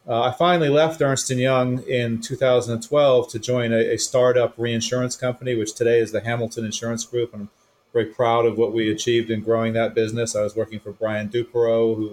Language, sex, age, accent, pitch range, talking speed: English, male, 30-49, American, 115-135 Hz, 200 wpm